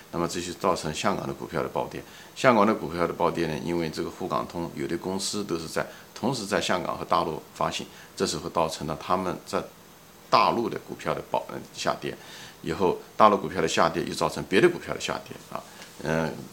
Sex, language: male, Chinese